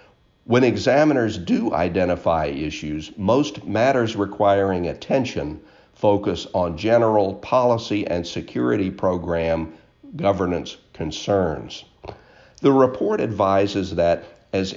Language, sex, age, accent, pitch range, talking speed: English, male, 50-69, American, 85-105 Hz, 95 wpm